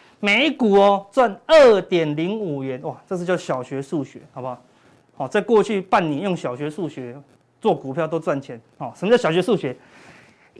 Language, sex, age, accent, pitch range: Chinese, male, 30-49, native, 155-235 Hz